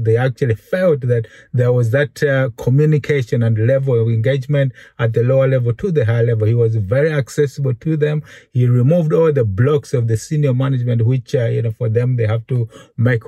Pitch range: 115-140 Hz